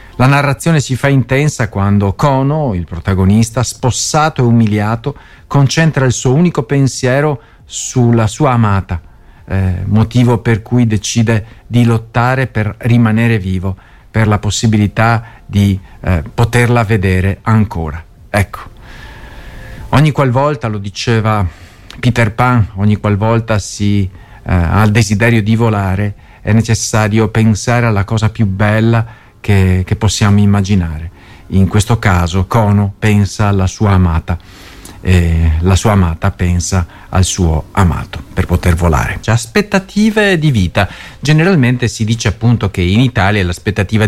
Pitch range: 95-130 Hz